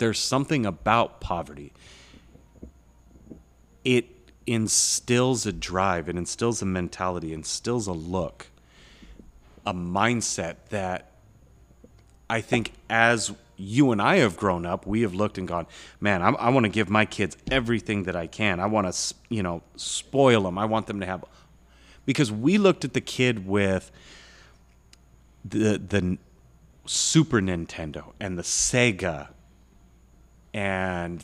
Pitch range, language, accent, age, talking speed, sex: 85-115 Hz, English, American, 30-49, 140 wpm, male